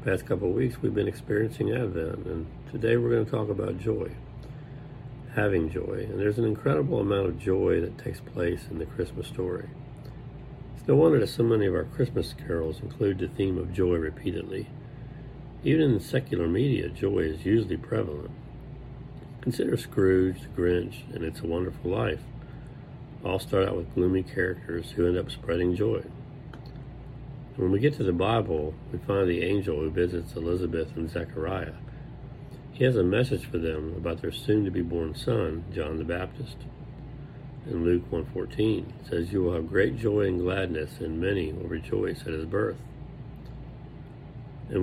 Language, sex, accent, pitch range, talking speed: English, male, American, 90-135 Hz, 165 wpm